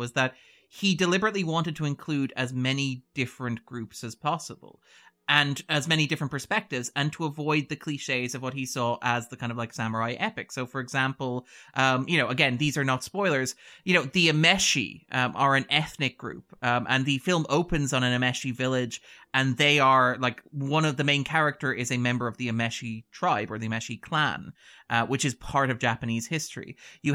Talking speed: 200 wpm